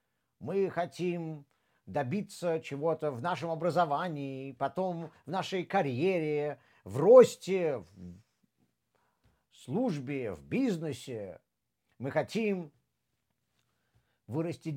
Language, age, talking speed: Russian, 50-69, 80 wpm